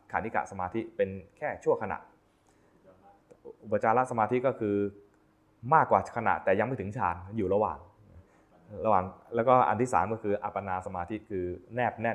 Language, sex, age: Thai, male, 20-39